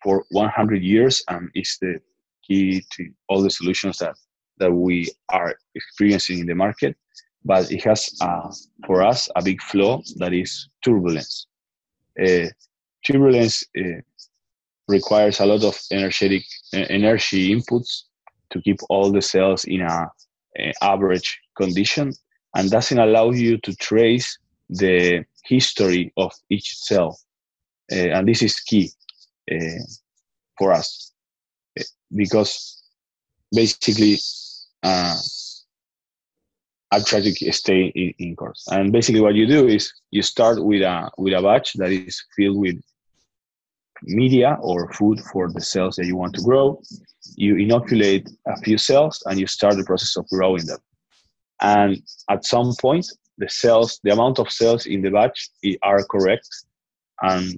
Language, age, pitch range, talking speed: English, 20-39, 90-110 Hz, 145 wpm